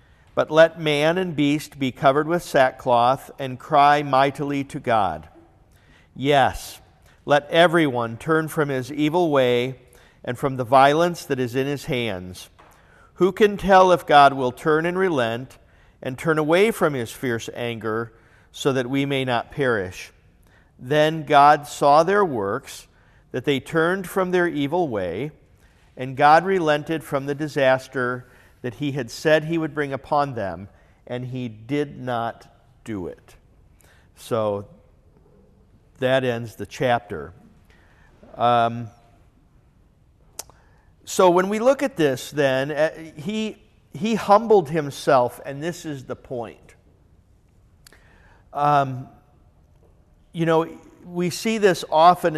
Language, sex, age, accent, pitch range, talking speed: English, male, 50-69, American, 120-155 Hz, 135 wpm